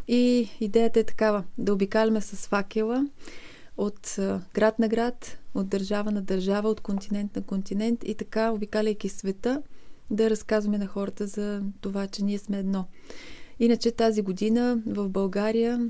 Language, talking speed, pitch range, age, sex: Bulgarian, 145 wpm, 195-220 Hz, 30-49, female